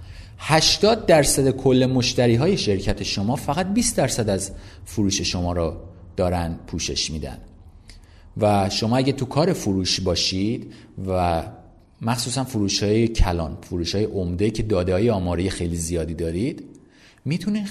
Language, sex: Persian, male